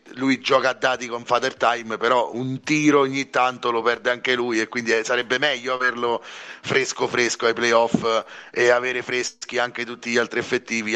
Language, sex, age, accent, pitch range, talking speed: Italian, male, 30-49, native, 115-130 Hz, 180 wpm